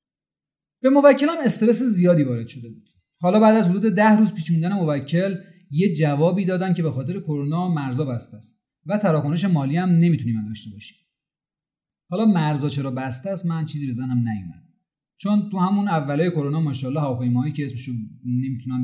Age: 30-49